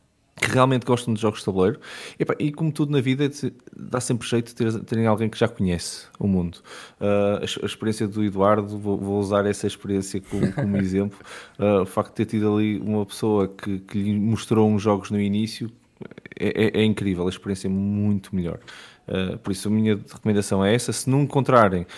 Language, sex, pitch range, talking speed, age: Portuguese, male, 95-115 Hz, 210 wpm, 20-39